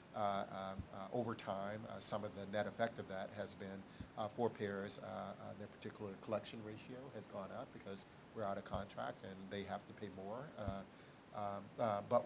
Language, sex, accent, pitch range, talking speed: English, male, American, 100-110 Hz, 200 wpm